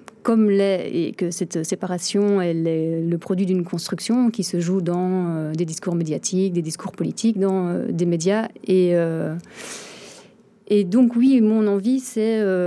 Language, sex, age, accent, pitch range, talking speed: French, female, 30-49, French, 180-205 Hz, 155 wpm